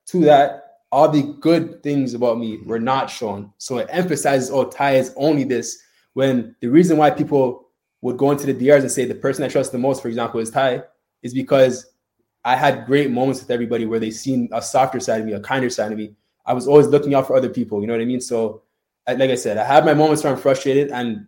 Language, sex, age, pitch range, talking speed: English, male, 20-39, 115-140 Hz, 245 wpm